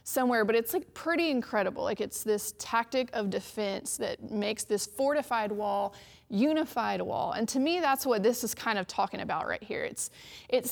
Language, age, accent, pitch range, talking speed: English, 30-49, American, 210-255 Hz, 190 wpm